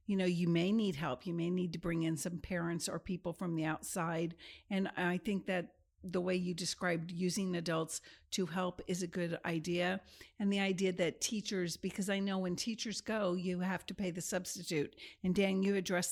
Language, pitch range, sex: English, 165-190 Hz, female